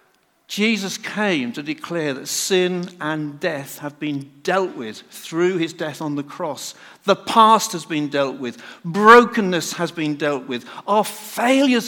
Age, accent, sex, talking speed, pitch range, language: 50-69, British, male, 155 wpm, 155-220 Hz, English